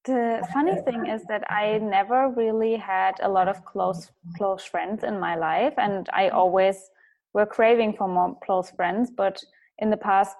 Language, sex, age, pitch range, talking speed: English, female, 20-39, 185-235 Hz, 180 wpm